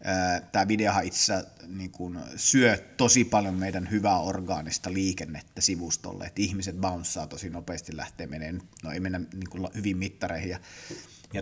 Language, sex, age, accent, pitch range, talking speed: Finnish, male, 30-49, native, 95-120 Hz, 145 wpm